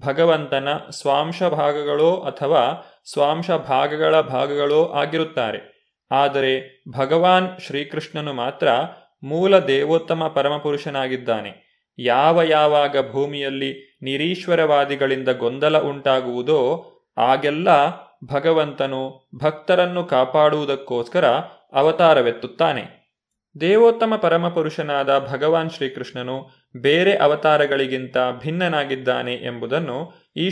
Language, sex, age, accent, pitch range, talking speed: Kannada, male, 30-49, native, 135-165 Hz, 70 wpm